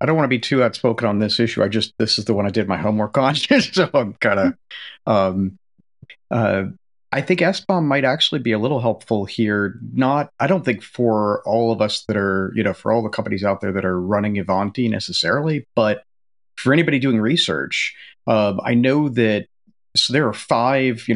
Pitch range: 100-130 Hz